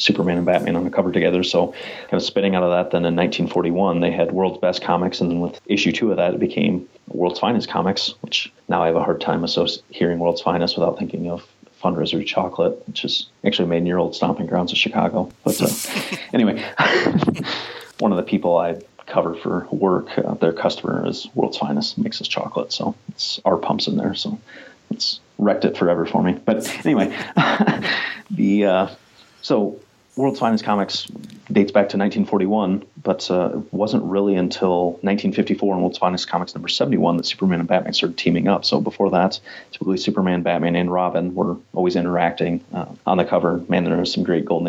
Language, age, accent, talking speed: English, 30-49, American, 200 wpm